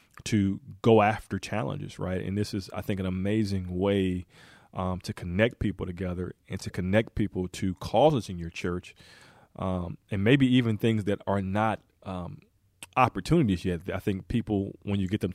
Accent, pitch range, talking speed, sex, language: American, 90-110 Hz, 175 wpm, male, English